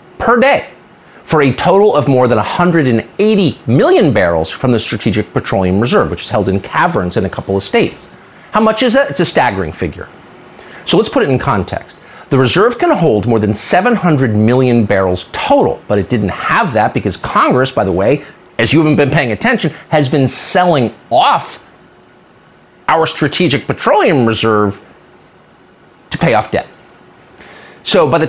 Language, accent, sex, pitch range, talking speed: English, American, male, 105-145 Hz, 170 wpm